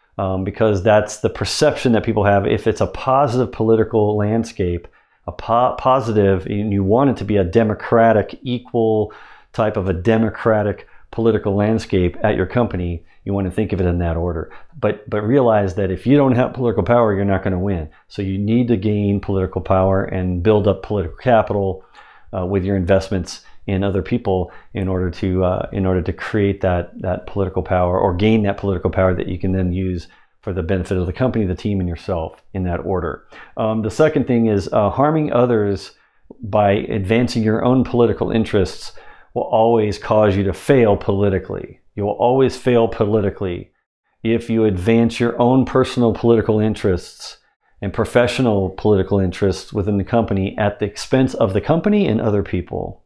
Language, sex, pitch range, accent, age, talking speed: English, male, 95-115 Hz, American, 50-69, 185 wpm